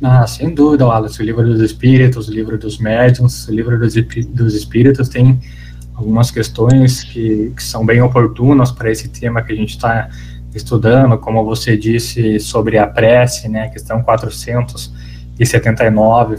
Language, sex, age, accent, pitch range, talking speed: Portuguese, male, 20-39, Brazilian, 110-130 Hz, 150 wpm